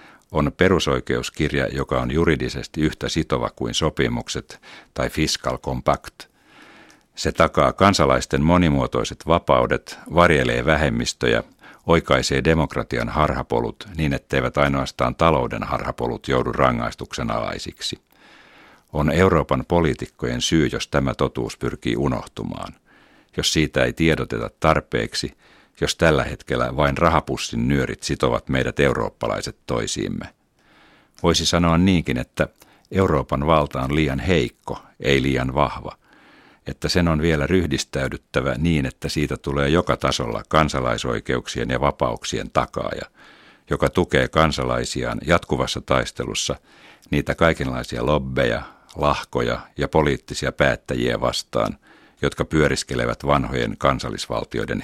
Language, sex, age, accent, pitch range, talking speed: Finnish, male, 60-79, native, 65-80 Hz, 105 wpm